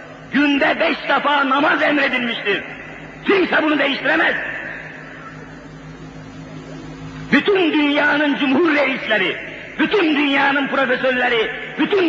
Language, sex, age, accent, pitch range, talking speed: Turkish, male, 50-69, native, 250-305 Hz, 80 wpm